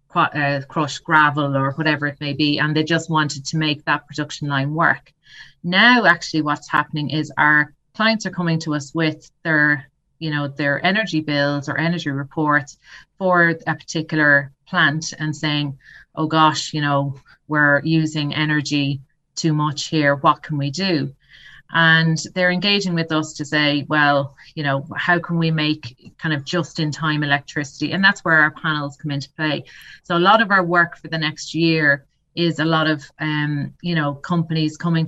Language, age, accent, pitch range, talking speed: English, 30-49, Irish, 145-160 Hz, 180 wpm